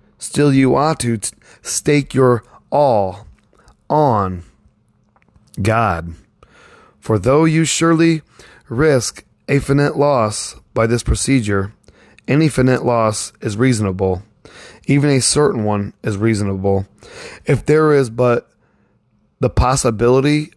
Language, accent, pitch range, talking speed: English, American, 105-140 Hz, 110 wpm